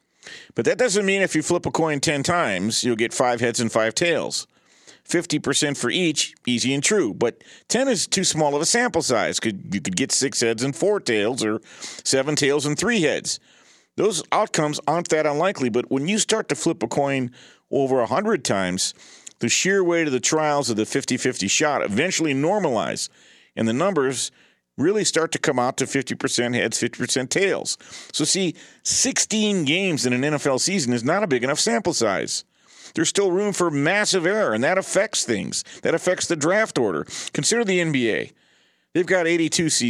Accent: American